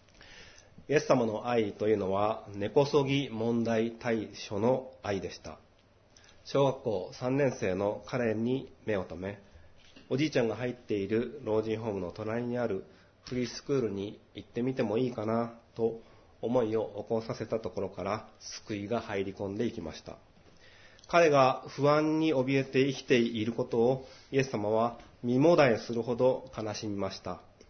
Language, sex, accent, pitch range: Japanese, male, native, 100-125 Hz